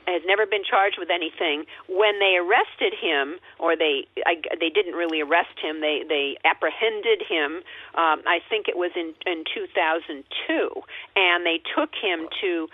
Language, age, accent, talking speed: English, 50-69, American, 165 wpm